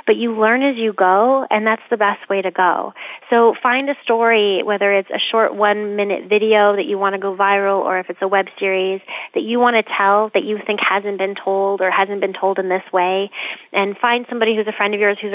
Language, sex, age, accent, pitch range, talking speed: English, female, 30-49, American, 190-235 Hz, 240 wpm